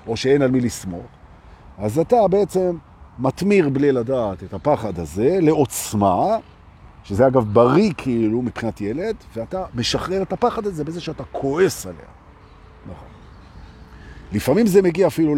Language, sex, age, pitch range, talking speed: Hebrew, male, 50-69, 105-145 Hz, 135 wpm